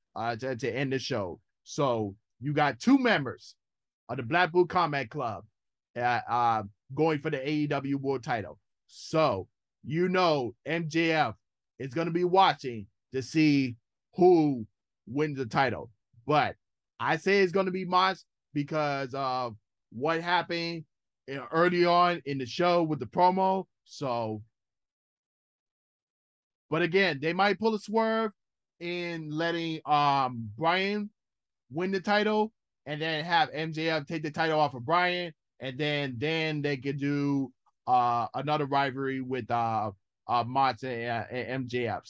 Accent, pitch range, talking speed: American, 130-175 Hz, 145 wpm